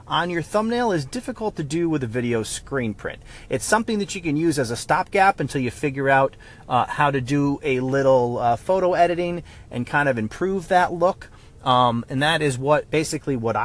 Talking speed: 205 wpm